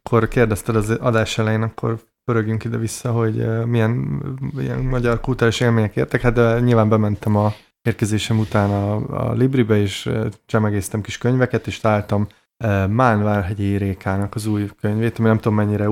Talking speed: 150 wpm